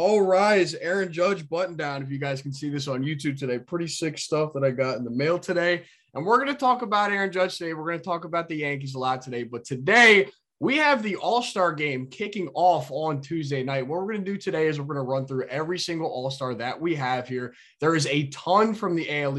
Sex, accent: male, American